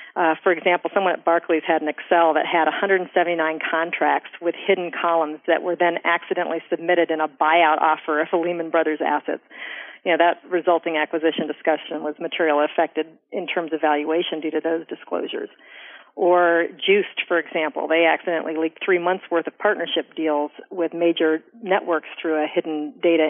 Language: English